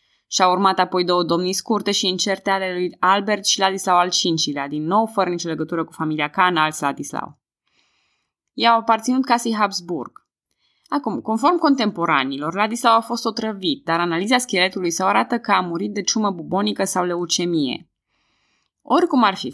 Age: 20-39